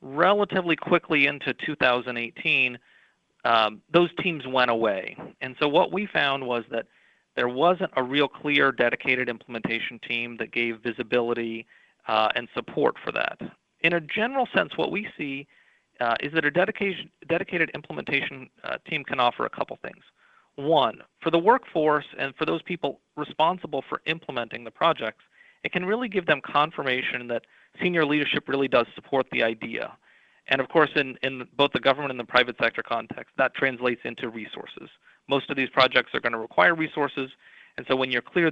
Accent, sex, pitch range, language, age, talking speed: American, male, 120-160 Hz, English, 40-59, 170 wpm